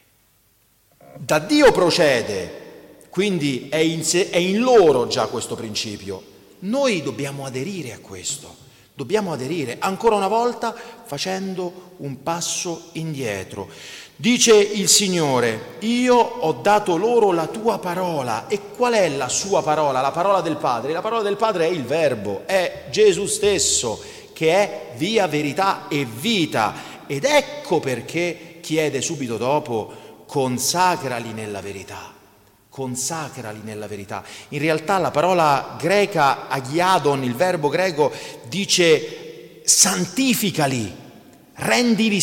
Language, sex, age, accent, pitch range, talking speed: Italian, male, 40-59, native, 145-235 Hz, 120 wpm